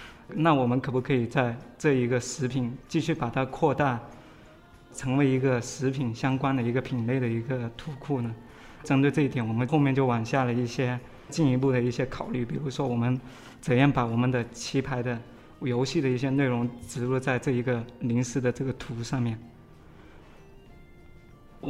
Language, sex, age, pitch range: Chinese, male, 20-39, 120-135 Hz